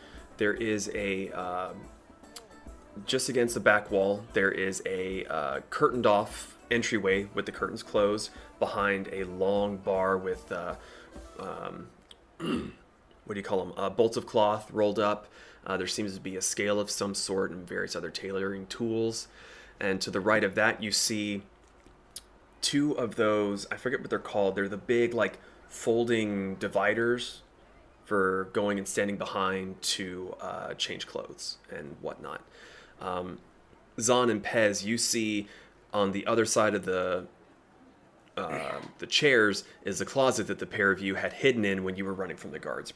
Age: 20-39